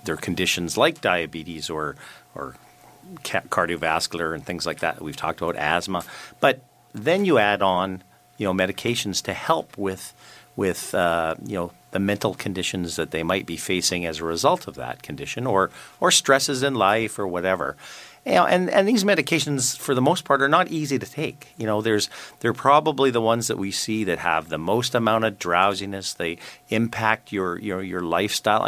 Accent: American